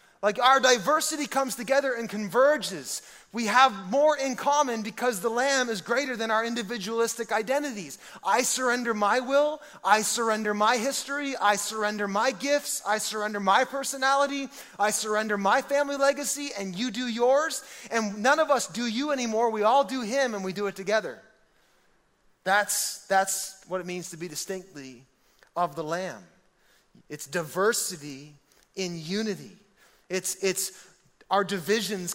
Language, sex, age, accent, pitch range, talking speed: English, male, 30-49, American, 195-255 Hz, 150 wpm